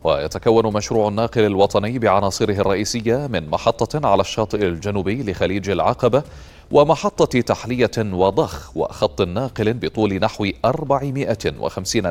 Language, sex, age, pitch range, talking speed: Arabic, male, 30-49, 95-115 Hz, 105 wpm